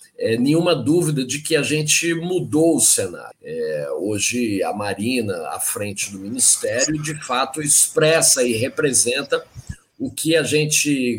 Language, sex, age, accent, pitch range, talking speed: Portuguese, male, 50-69, Brazilian, 130-170 Hz, 145 wpm